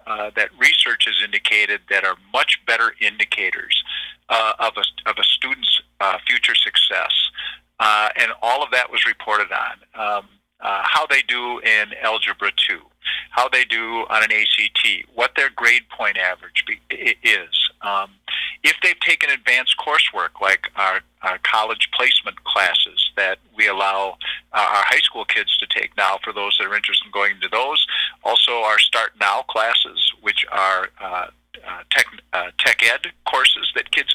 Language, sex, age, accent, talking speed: English, male, 50-69, American, 165 wpm